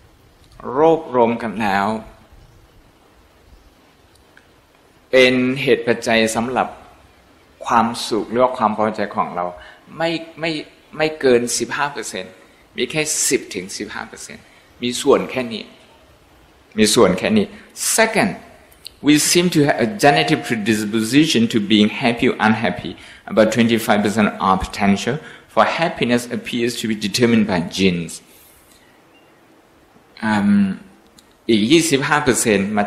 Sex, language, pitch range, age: male, Thai, 105-145 Hz, 60-79